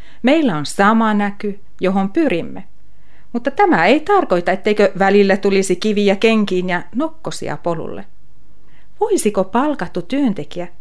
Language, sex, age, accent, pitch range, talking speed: Finnish, female, 40-59, native, 165-255 Hz, 115 wpm